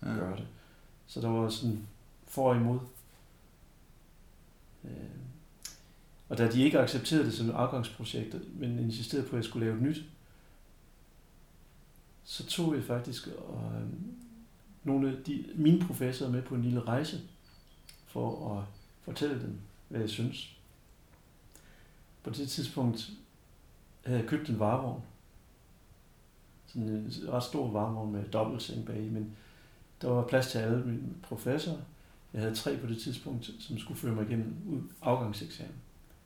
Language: Danish